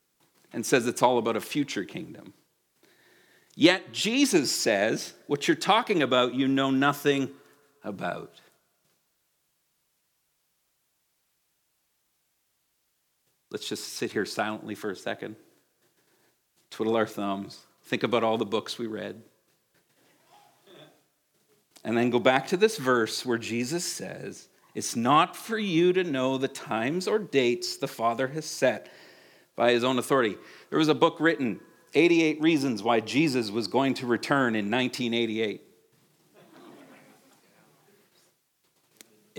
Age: 50-69